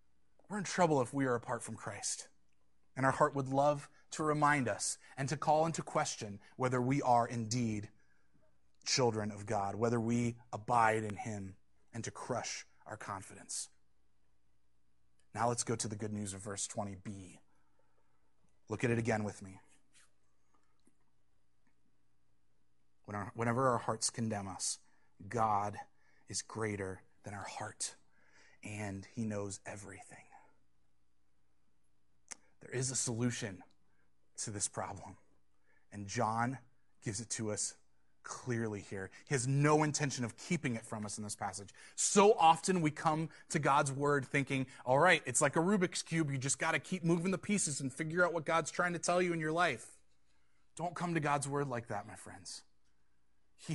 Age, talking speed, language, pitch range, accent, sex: 30-49, 160 wpm, English, 95-145 Hz, American, male